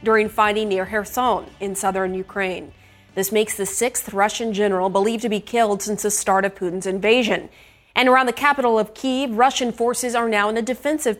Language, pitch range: English, 200-240 Hz